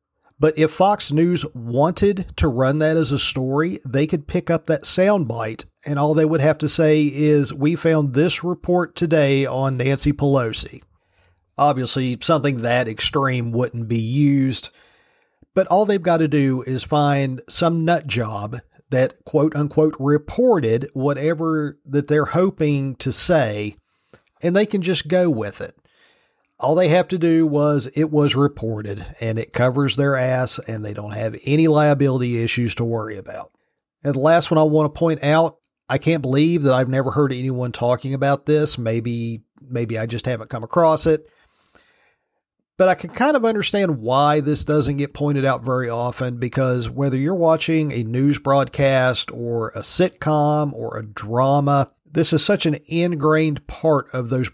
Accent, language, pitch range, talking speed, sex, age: American, English, 125-160 Hz, 170 wpm, male, 40-59